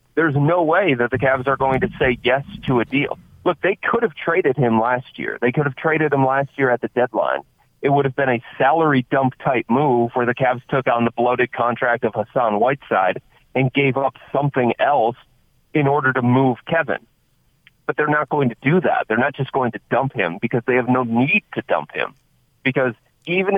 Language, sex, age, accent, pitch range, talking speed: English, male, 40-59, American, 120-140 Hz, 220 wpm